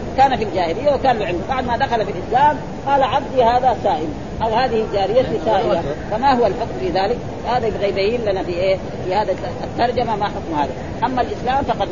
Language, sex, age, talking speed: Arabic, female, 40-59, 185 wpm